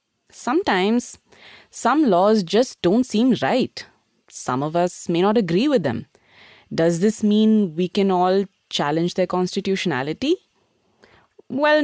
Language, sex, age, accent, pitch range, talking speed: English, female, 20-39, Indian, 140-220 Hz, 125 wpm